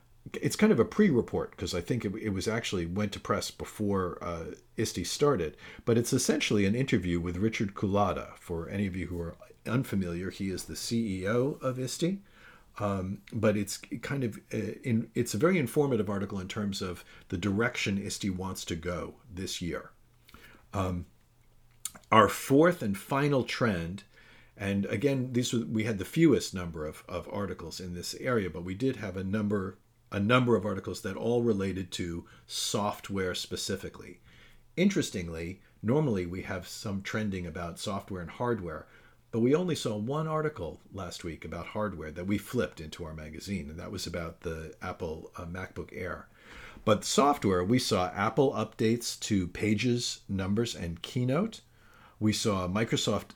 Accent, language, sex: American, English, male